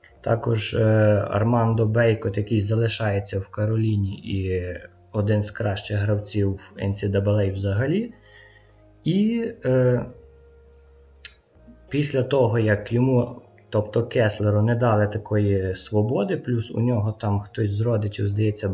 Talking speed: 115 wpm